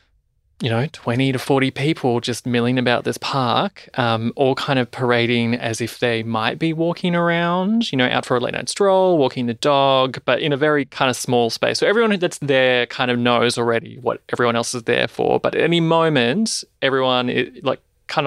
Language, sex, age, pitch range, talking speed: English, male, 20-39, 120-150 Hz, 210 wpm